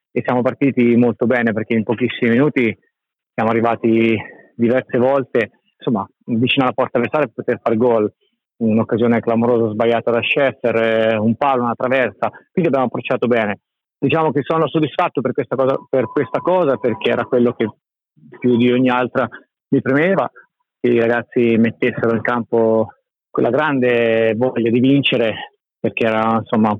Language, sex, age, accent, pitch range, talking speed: Italian, male, 30-49, native, 115-130 Hz, 155 wpm